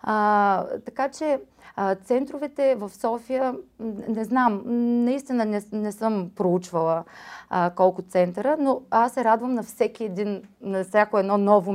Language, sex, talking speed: Bulgarian, female, 130 wpm